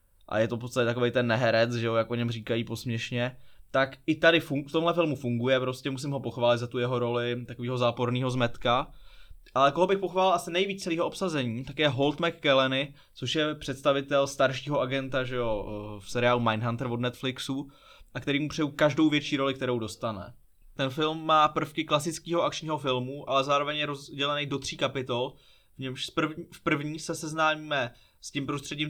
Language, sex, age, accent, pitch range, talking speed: Czech, male, 20-39, native, 125-155 Hz, 185 wpm